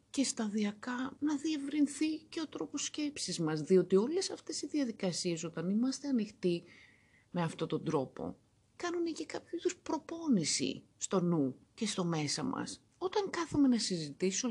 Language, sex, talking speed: Greek, female, 145 wpm